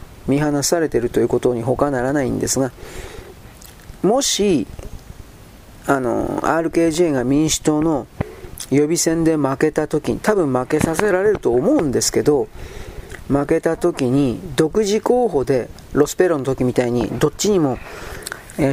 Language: Japanese